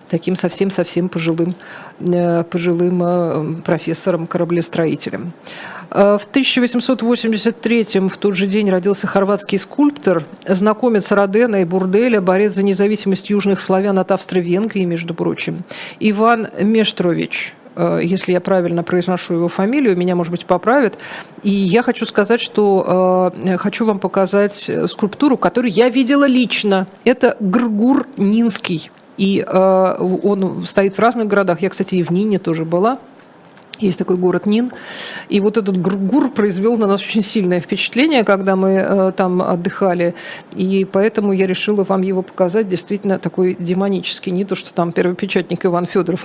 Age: 40-59